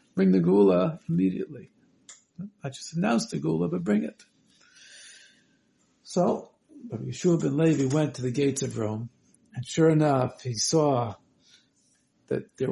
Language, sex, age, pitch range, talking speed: English, male, 60-79, 130-200 Hz, 140 wpm